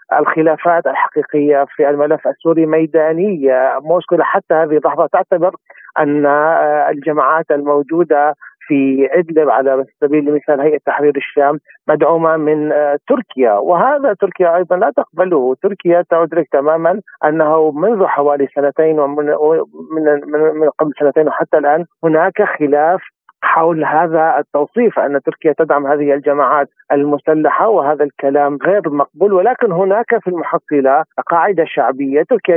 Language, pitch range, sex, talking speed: Arabic, 145-175 Hz, male, 125 wpm